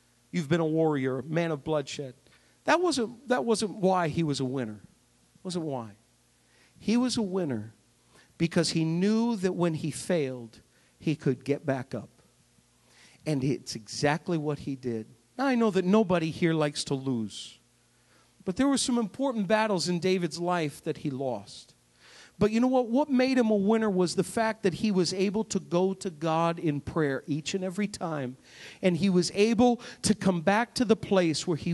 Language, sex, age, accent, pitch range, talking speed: English, male, 50-69, American, 145-225 Hz, 190 wpm